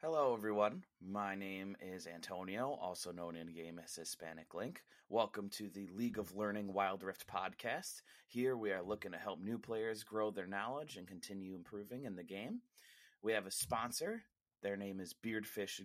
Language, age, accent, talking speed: English, 30-49, American, 175 wpm